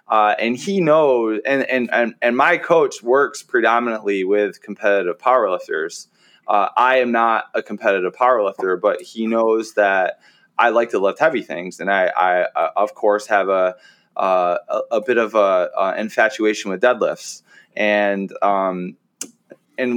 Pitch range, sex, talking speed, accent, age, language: 105-125 Hz, male, 160 wpm, American, 20-39, English